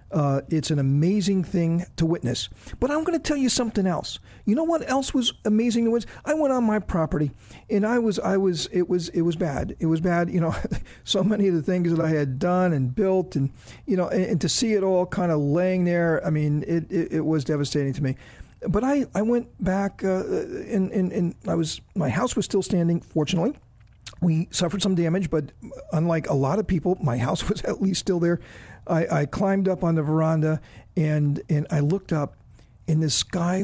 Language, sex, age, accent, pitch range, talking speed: English, male, 50-69, American, 155-200 Hz, 225 wpm